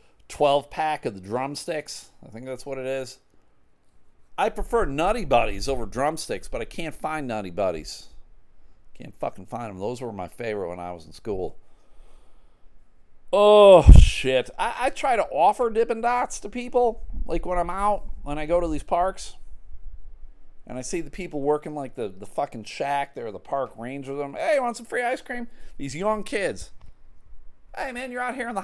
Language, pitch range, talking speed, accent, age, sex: English, 100-170 Hz, 190 wpm, American, 40-59, male